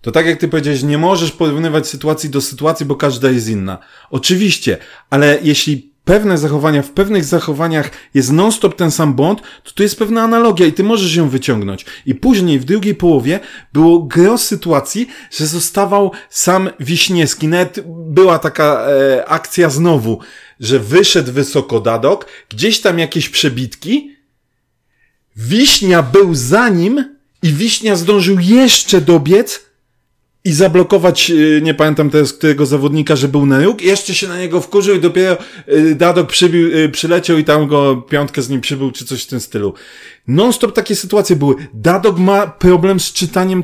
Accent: native